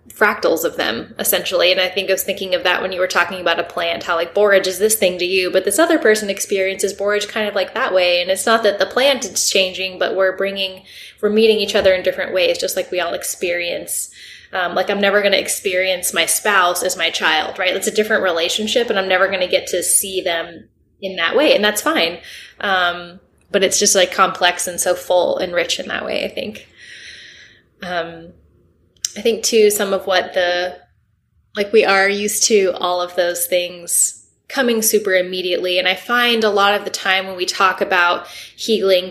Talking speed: 220 wpm